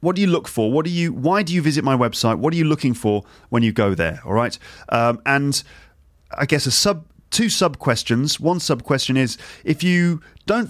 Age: 30-49